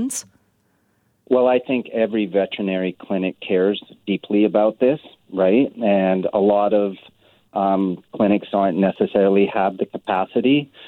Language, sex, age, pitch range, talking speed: English, male, 40-59, 95-115 Hz, 120 wpm